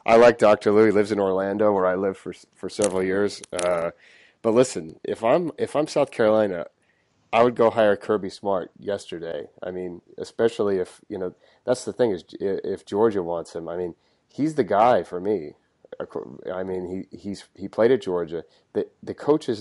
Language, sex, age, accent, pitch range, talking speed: English, male, 30-49, American, 85-105 Hz, 195 wpm